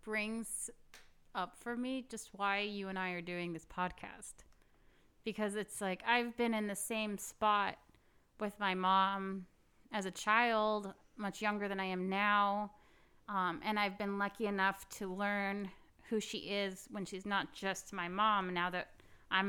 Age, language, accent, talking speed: 30-49, English, American, 165 wpm